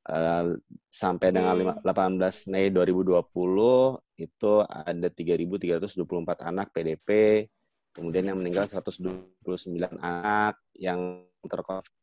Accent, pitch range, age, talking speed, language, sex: native, 85-95 Hz, 20-39, 95 wpm, Indonesian, male